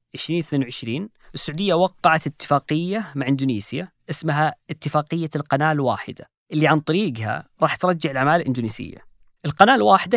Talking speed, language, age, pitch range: 110 wpm, Arabic, 20-39, 135-170 Hz